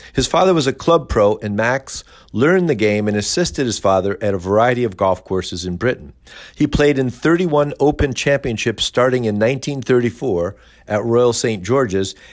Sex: male